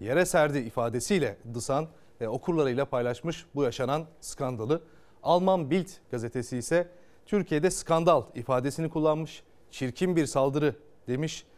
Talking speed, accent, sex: 115 wpm, native, male